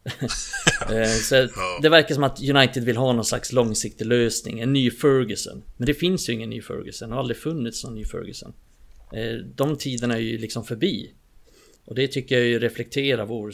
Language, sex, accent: Swedish, male, native